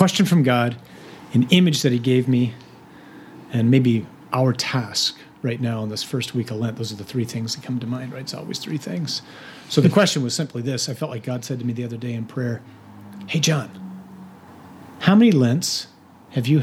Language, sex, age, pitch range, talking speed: English, male, 40-59, 120-160 Hz, 215 wpm